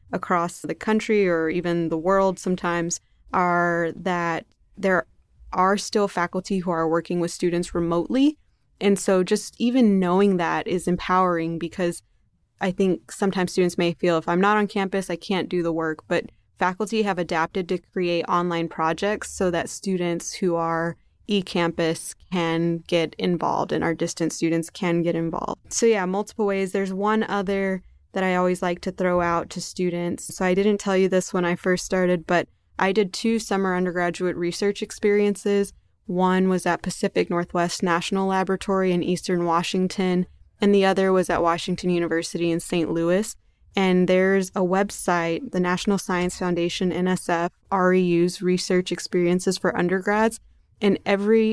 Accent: American